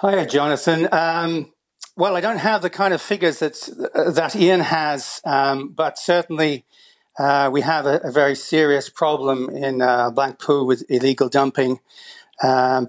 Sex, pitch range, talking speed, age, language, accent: male, 135-160 Hz, 155 wpm, 40-59, English, British